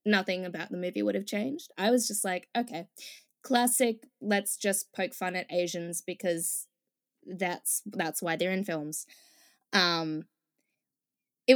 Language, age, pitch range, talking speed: English, 10-29, 175-240 Hz, 145 wpm